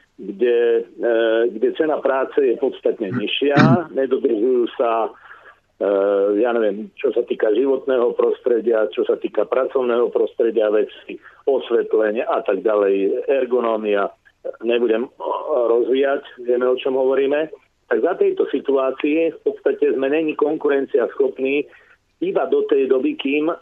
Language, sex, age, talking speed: Slovak, male, 50-69, 120 wpm